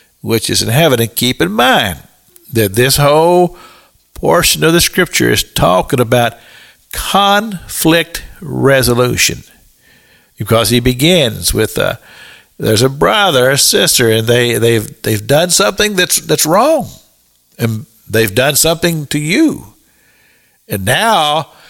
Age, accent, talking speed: 50-69, American, 130 wpm